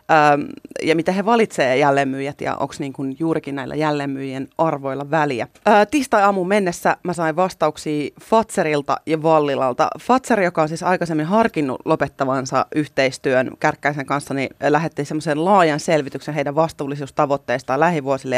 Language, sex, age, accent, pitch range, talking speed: Finnish, female, 30-49, native, 145-195 Hz, 130 wpm